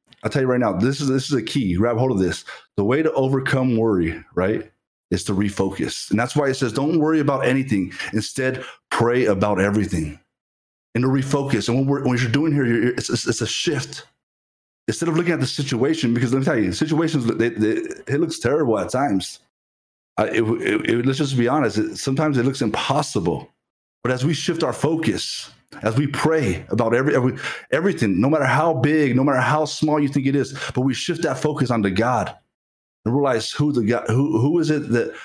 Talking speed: 215 wpm